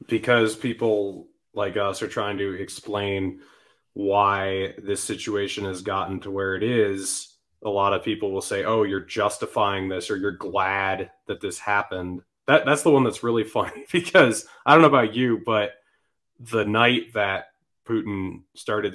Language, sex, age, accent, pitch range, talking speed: English, male, 20-39, American, 100-120 Hz, 160 wpm